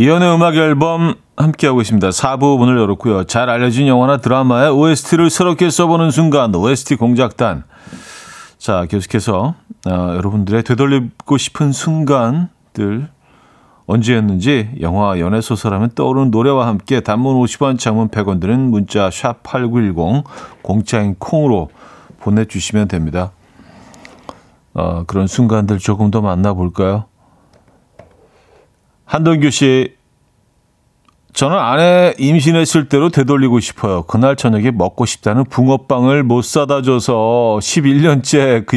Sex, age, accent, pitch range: male, 40-59, native, 100-140 Hz